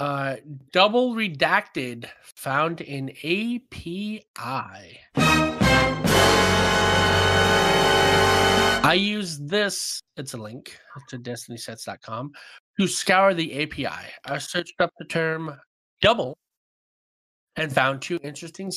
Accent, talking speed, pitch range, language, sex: American, 90 wpm, 135-190 Hz, English, male